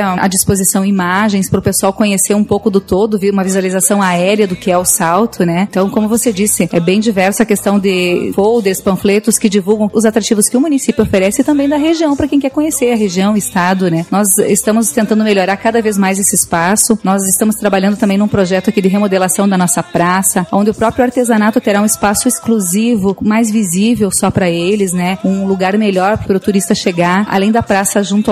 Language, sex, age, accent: Portuguese, female, 30-49, Brazilian